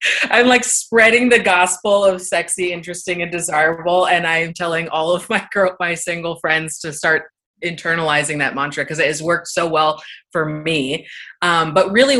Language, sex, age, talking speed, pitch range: English, female, 20-39, 175 wpm, 150-190 Hz